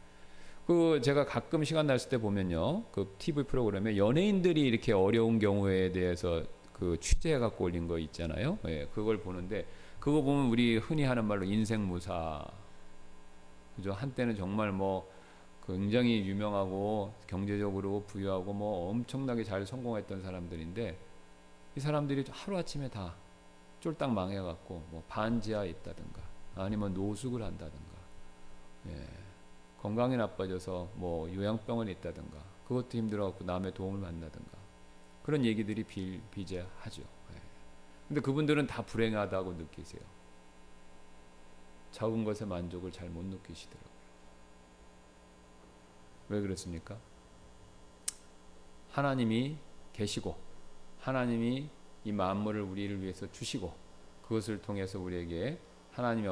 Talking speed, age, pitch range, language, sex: 100 wpm, 40-59, 75-110 Hz, English, male